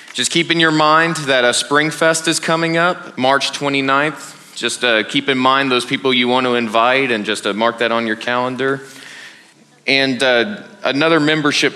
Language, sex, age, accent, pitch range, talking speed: English, male, 30-49, American, 120-145 Hz, 190 wpm